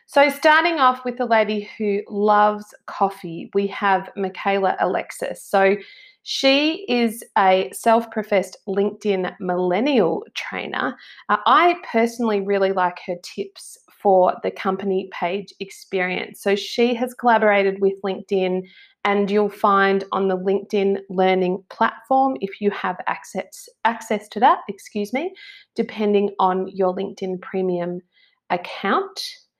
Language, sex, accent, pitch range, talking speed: English, female, Australian, 190-230 Hz, 125 wpm